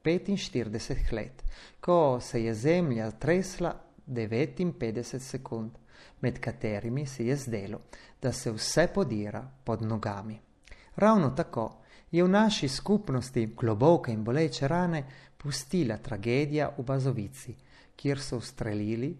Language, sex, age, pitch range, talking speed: Italian, male, 30-49, 115-155 Hz, 120 wpm